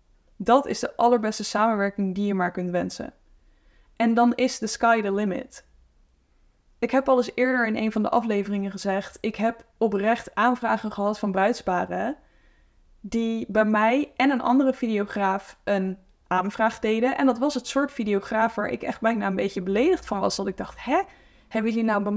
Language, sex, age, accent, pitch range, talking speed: English, female, 10-29, Dutch, 195-240 Hz, 185 wpm